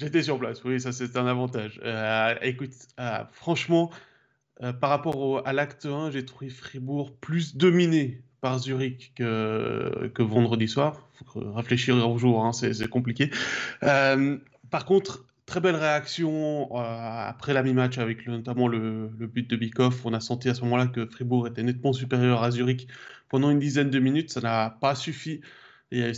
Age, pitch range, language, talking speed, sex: 20-39, 120-135 Hz, French, 185 wpm, male